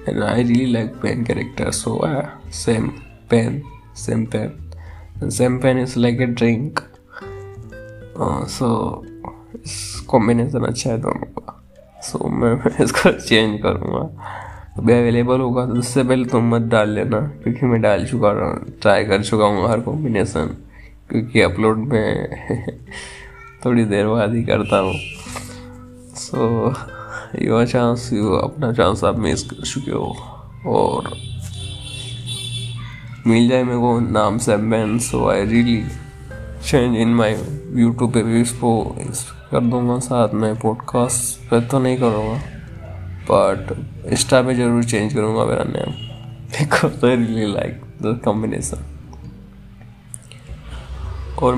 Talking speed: 110 wpm